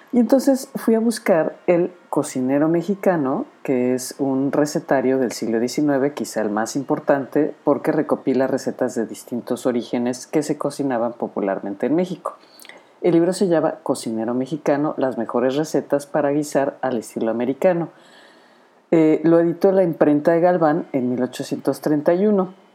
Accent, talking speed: Mexican, 140 wpm